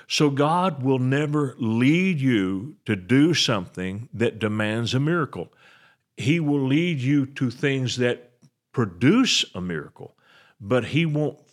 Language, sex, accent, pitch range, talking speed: English, male, American, 110-145 Hz, 135 wpm